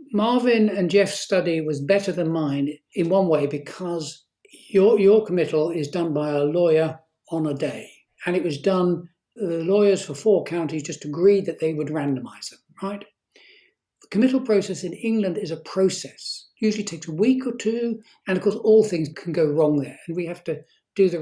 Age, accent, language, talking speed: 60-79, British, English, 200 wpm